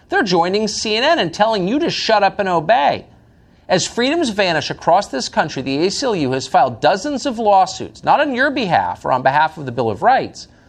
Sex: male